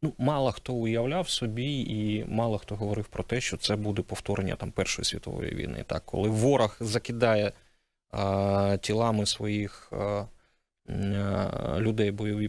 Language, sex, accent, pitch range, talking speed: Ukrainian, male, native, 105-125 Hz, 140 wpm